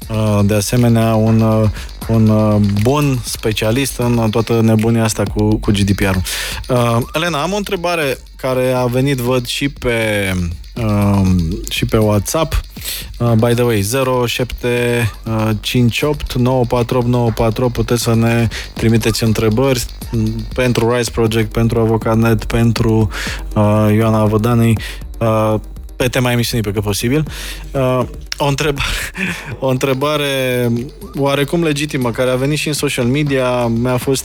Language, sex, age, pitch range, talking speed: Romanian, male, 20-39, 110-130 Hz, 125 wpm